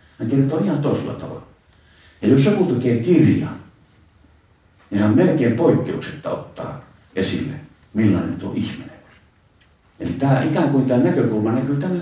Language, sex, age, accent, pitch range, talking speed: Finnish, male, 50-69, native, 95-130 Hz, 135 wpm